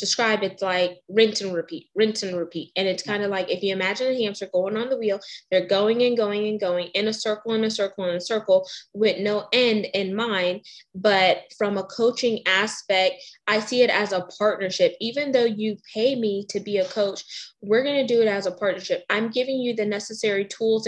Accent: American